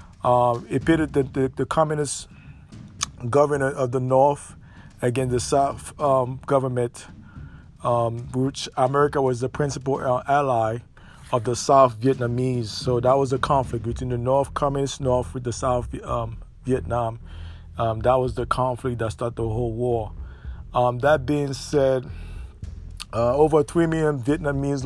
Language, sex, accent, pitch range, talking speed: English, male, American, 120-140 Hz, 145 wpm